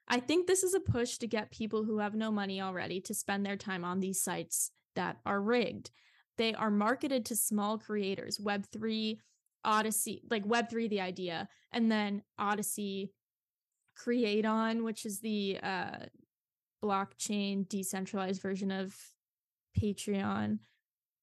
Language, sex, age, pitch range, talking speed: English, female, 10-29, 200-235 Hz, 145 wpm